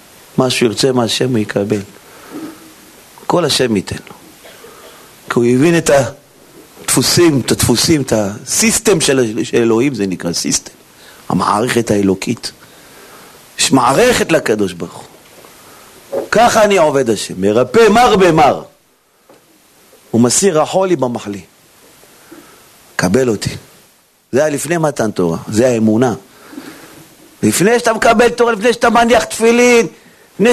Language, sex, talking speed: Hebrew, male, 120 wpm